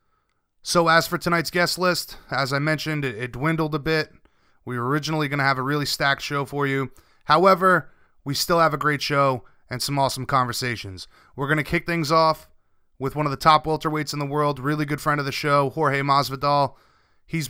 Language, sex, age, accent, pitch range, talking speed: English, male, 30-49, American, 135-155 Hz, 210 wpm